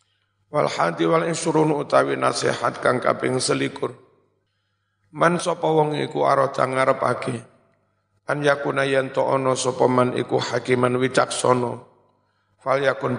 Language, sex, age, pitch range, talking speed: Indonesian, male, 50-69, 115-135 Hz, 105 wpm